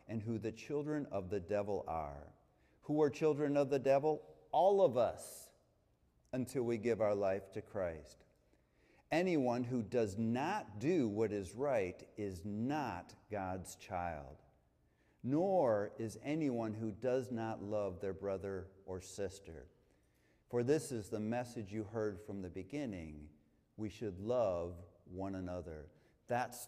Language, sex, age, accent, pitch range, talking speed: English, male, 50-69, American, 95-120 Hz, 140 wpm